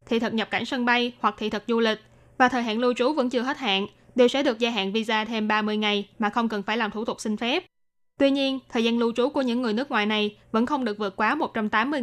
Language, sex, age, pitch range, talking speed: Vietnamese, female, 20-39, 210-250 Hz, 280 wpm